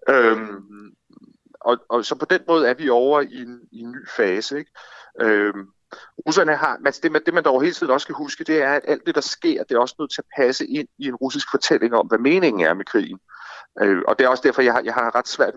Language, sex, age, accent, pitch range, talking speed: Danish, male, 30-49, native, 105-135 Hz, 255 wpm